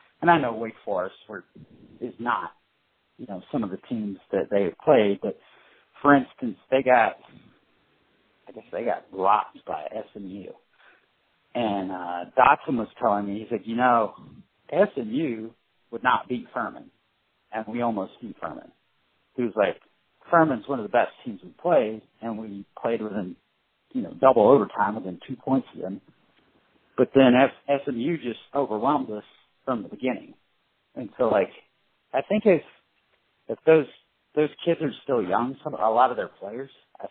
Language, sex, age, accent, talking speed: English, male, 50-69, American, 165 wpm